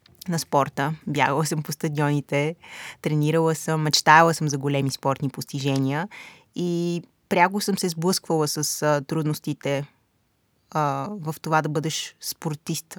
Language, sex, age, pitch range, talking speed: Bulgarian, female, 20-39, 150-180 Hz, 125 wpm